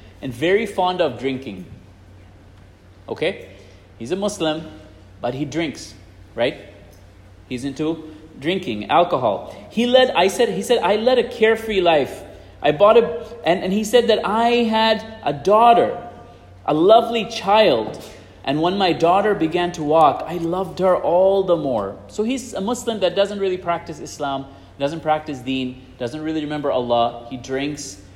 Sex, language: male, English